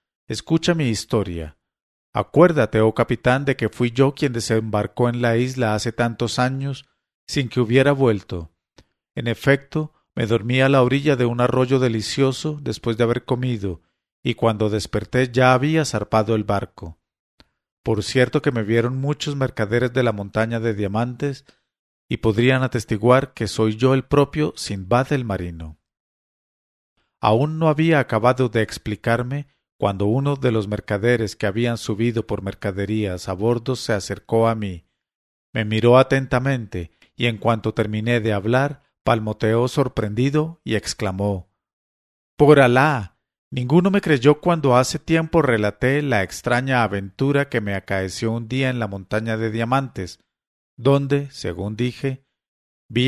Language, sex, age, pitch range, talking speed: English, male, 40-59, 105-135 Hz, 145 wpm